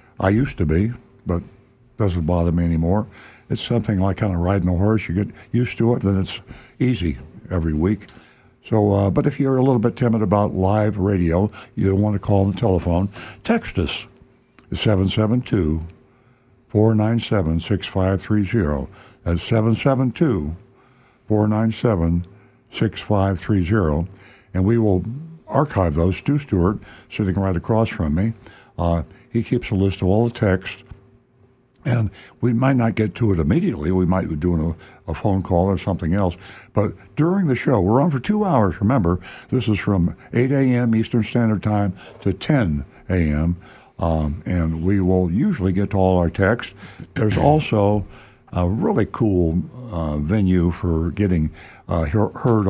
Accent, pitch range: American, 90-120 Hz